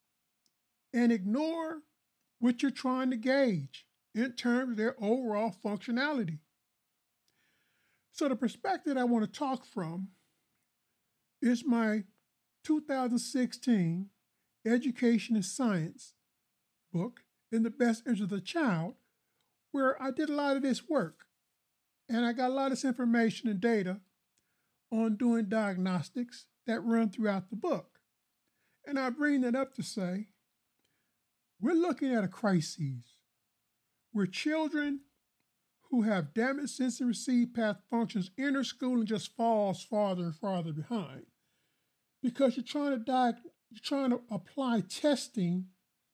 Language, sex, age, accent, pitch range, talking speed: English, male, 50-69, American, 210-265 Hz, 130 wpm